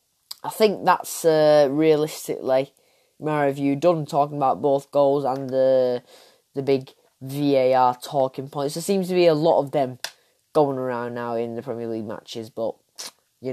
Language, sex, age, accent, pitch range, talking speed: English, female, 10-29, British, 140-185 Hz, 170 wpm